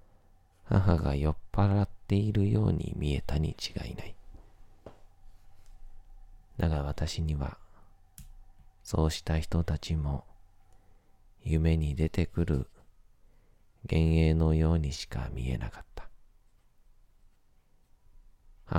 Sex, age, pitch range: male, 40-59, 75-95 Hz